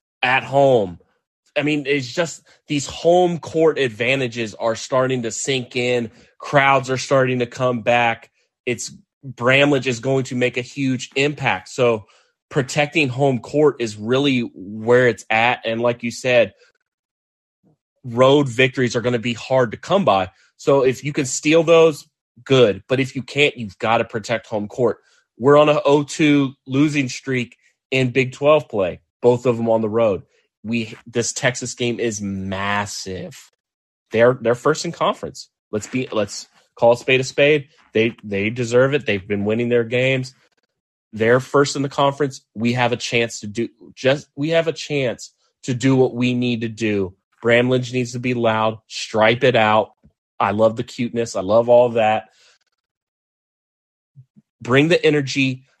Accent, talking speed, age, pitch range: American, 170 wpm, 30-49, 115-140 Hz